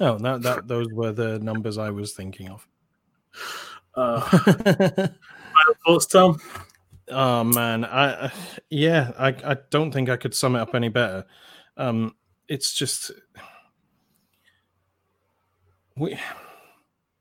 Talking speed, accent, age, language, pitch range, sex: 120 wpm, British, 30-49, English, 110-135 Hz, male